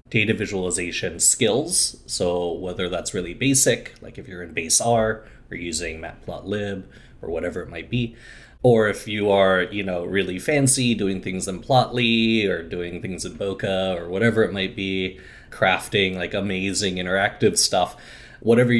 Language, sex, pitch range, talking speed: English, male, 95-115 Hz, 160 wpm